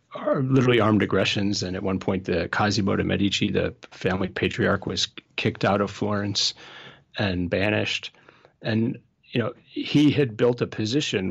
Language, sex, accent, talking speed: English, male, American, 160 wpm